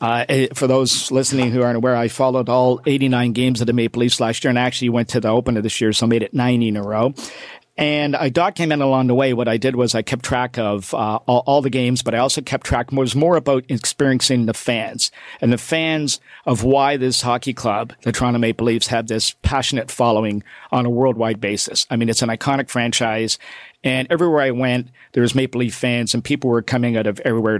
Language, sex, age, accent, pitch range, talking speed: English, male, 50-69, American, 120-135 Hz, 230 wpm